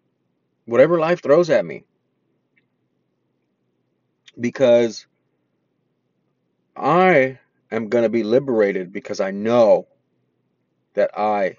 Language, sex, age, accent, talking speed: English, male, 30-49, American, 90 wpm